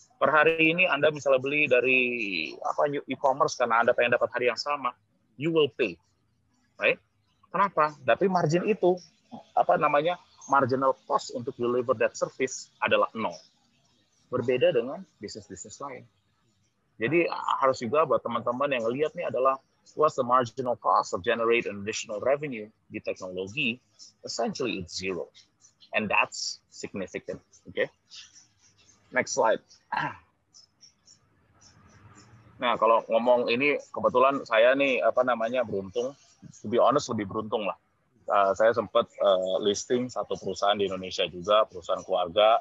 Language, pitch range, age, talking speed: Indonesian, 105-145 Hz, 30-49, 135 wpm